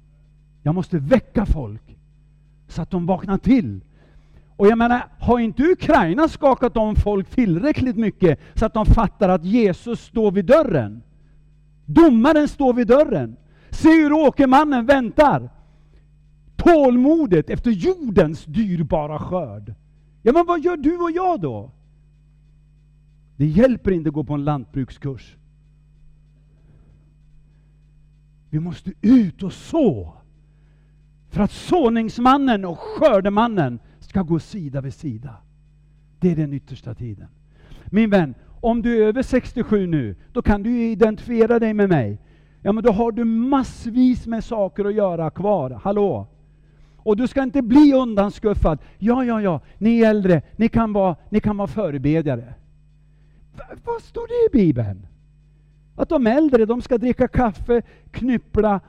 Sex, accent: male, native